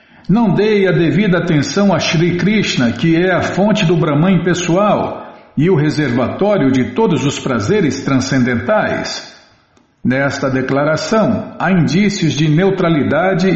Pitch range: 135-185 Hz